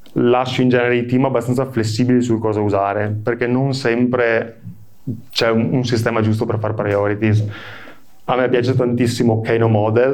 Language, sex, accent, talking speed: Italian, male, native, 160 wpm